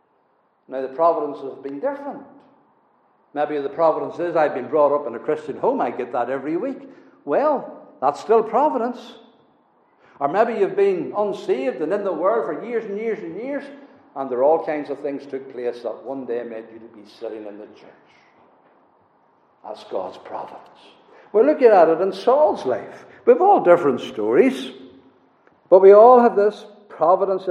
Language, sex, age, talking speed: English, male, 60-79, 185 wpm